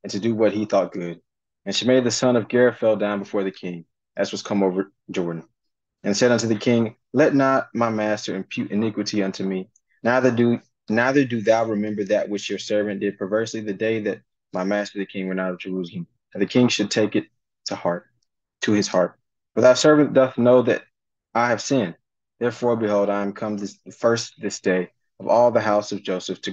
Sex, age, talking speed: male, 20-39, 215 wpm